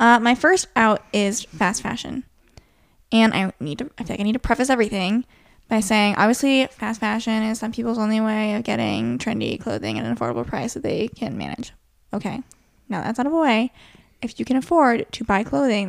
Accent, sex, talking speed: American, female, 205 wpm